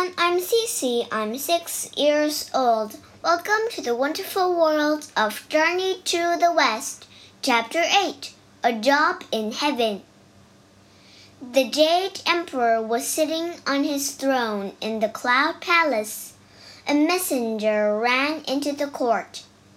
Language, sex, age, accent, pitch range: Chinese, male, 10-29, American, 225-330 Hz